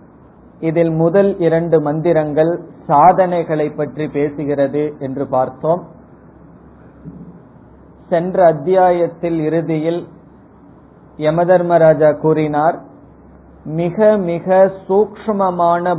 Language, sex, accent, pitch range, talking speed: Tamil, male, native, 150-185 Hz, 65 wpm